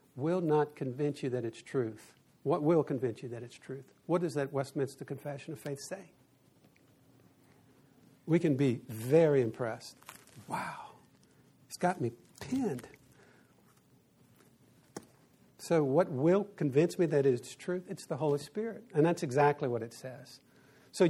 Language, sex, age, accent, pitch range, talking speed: English, male, 60-79, American, 135-175 Hz, 145 wpm